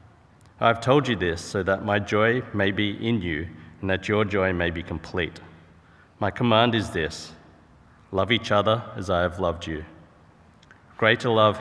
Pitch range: 85-110 Hz